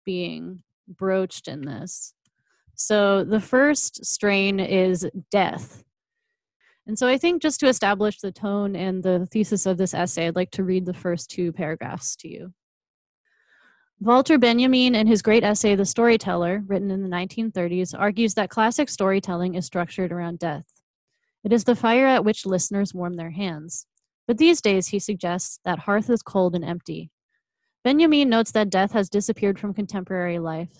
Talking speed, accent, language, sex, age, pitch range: 165 wpm, American, English, female, 20-39, 175-220 Hz